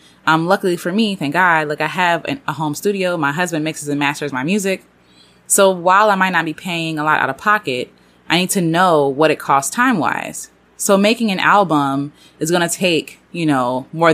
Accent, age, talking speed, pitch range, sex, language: American, 20-39, 215 wpm, 150-190 Hz, female, English